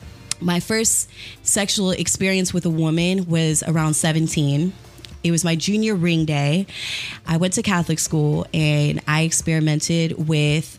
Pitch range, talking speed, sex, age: 160-220 Hz, 140 wpm, female, 20-39